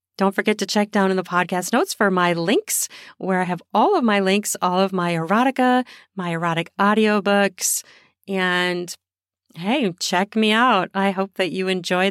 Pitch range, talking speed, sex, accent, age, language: 180-220 Hz, 180 wpm, female, American, 40-59, English